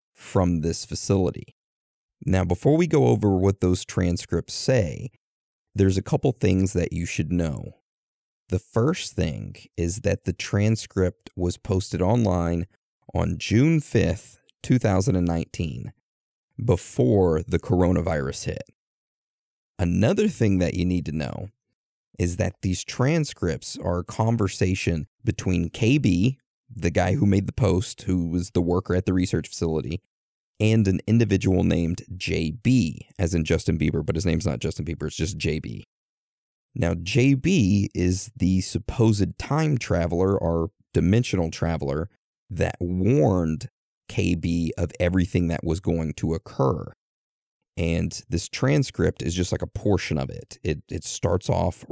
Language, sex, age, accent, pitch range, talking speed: English, male, 30-49, American, 85-110 Hz, 140 wpm